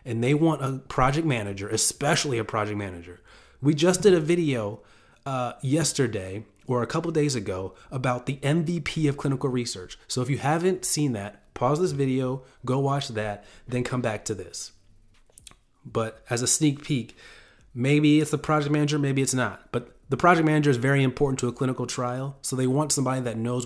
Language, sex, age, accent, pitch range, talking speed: English, male, 30-49, American, 115-145 Hz, 190 wpm